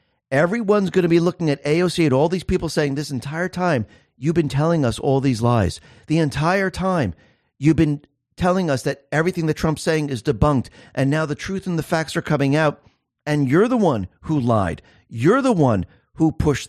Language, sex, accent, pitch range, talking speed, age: English, male, American, 115-165 Hz, 205 wpm, 40-59